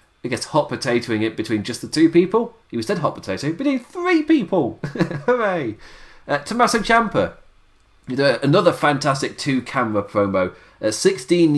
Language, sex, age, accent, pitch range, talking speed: English, male, 30-49, British, 95-145 Hz, 135 wpm